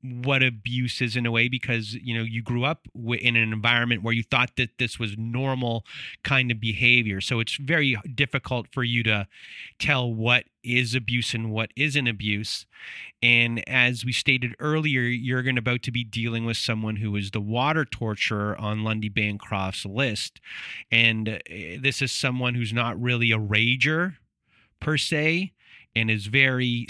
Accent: American